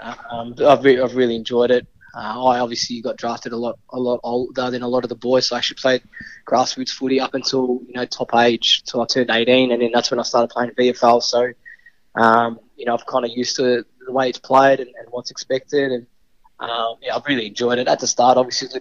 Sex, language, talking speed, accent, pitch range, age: male, English, 250 wpm, Australian, 115-130 Hz, 20-39